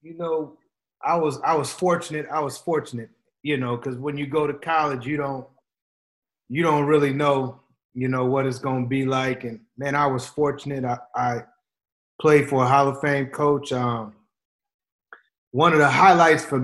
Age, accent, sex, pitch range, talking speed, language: 30-49, American, male, 125-145 Hz, 190 wpm, English